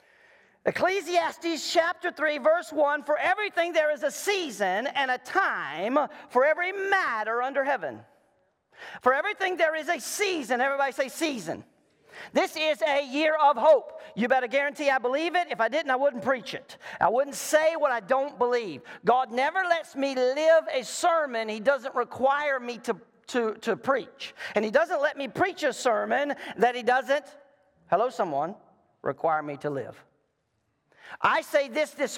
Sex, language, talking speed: male, English, 170 wpm